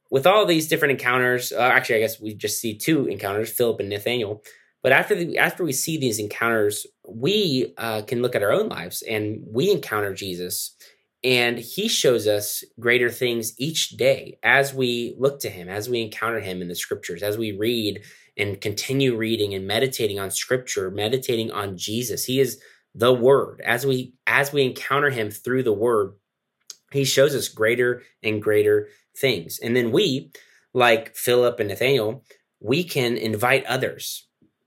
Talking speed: 175 wpm